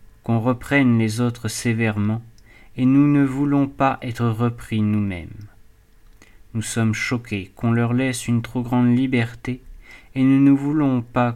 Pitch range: 105-125 Hz